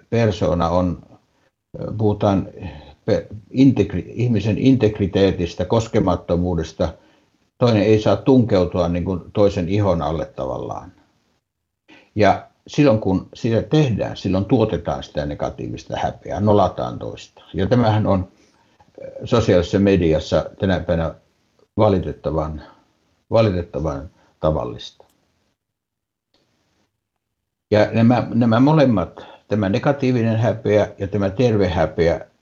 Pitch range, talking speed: 90-110 Hz, 95 wpm